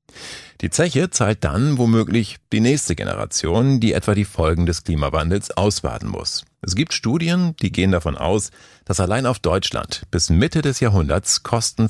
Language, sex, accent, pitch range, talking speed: German, male, German, 85-115 Hz, 160 wpm